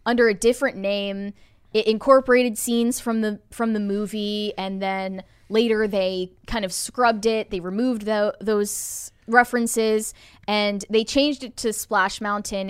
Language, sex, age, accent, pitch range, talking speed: English, female, 10-29, American, 195-260 Hz, 145 wpm